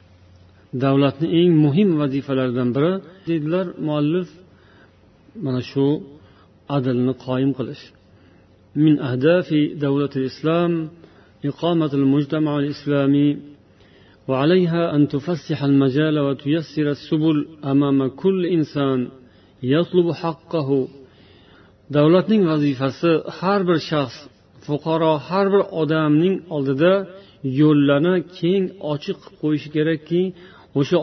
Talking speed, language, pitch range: 95 wpm, Bulgarian, 130-170 Hz